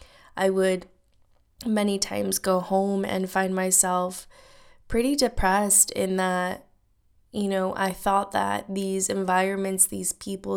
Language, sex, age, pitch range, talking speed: English, female, 20-39, 185-205 Hz, 125 wpm